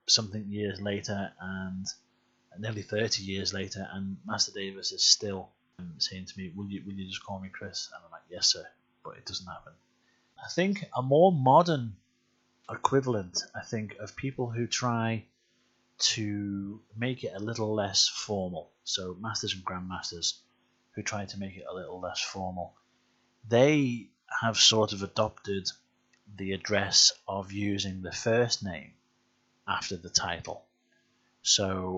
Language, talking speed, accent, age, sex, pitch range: English, 150 wpm, British, 30-49, male, 95-115 Hz